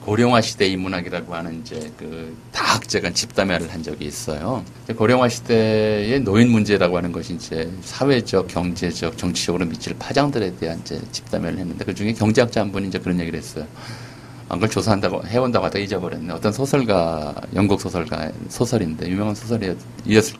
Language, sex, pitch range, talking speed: English, male, 90-120 Hz, 140 wpm